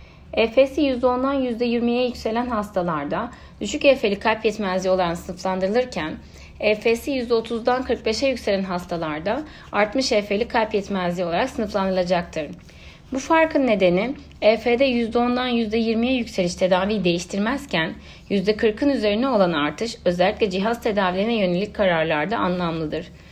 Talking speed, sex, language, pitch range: 105 wpm, female, Turkish, 180-235 Hz